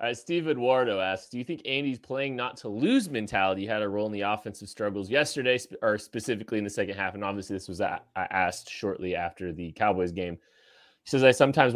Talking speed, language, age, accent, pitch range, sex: 205 wpm, English, 20-39, American, 100-125 Hz, male